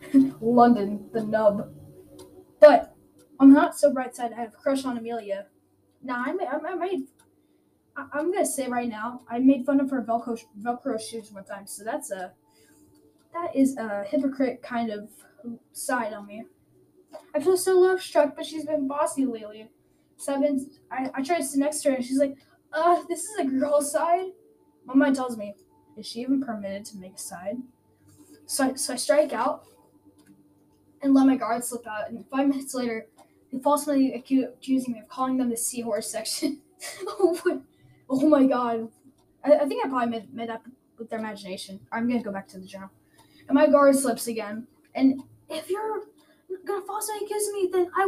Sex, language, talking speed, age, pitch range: female, English, 185 wpm, 10-29, 225-300 Hz